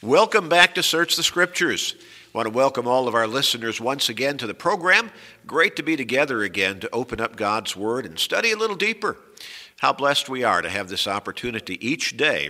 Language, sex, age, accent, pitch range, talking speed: English, male, 50-69, American, 105-140 Hz, 205 wpm